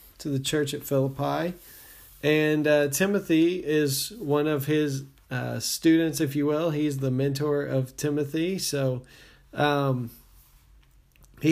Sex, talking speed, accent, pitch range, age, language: male, 130 wpm, American, 130-150 Hz, 40-59, English